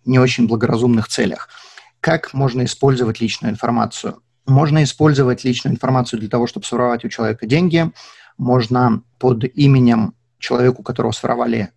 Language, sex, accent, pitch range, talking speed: Russian, male, native, 115-135 Hz, 140 wpm